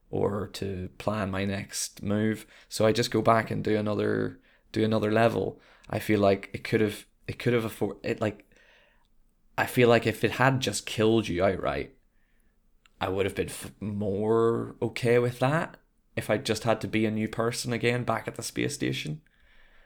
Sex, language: male, English